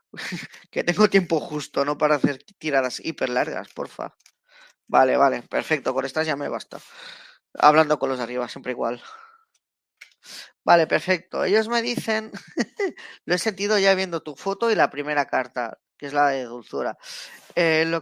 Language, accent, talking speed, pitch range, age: Spanish, Spanish, 165 wpm, 150-195 Hz, 20-39